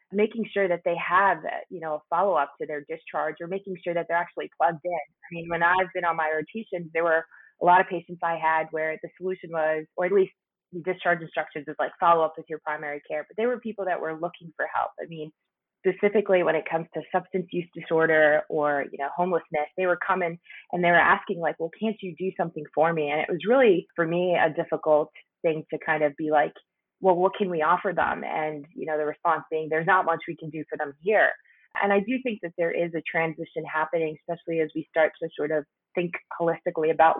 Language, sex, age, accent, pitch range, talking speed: English, female, 20-39, American, 155-175 Hz, 235 wpm